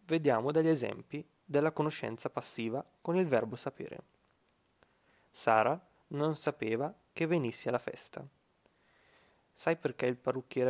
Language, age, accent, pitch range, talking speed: Italian, 20-39, native, 120-150 Hz, 120 wpm